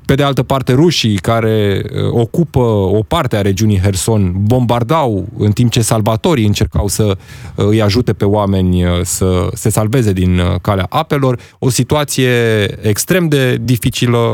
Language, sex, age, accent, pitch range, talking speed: Romanian, male, 20-39, native, 100-120 Hz, 140 wpm